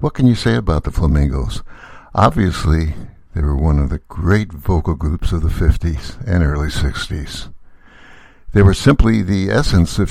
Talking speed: 165 wpm